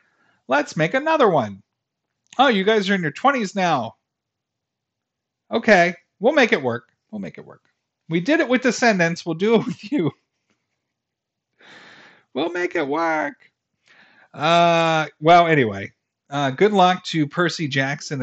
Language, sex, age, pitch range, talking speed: English, male, 40-59, 125-180 Hz, 145 wpm